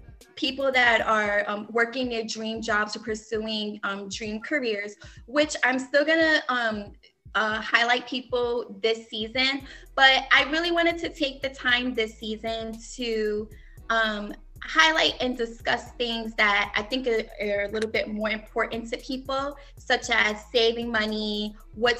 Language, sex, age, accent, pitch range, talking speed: English, female, 20-39, American, 215-250 Hz, 145 wpm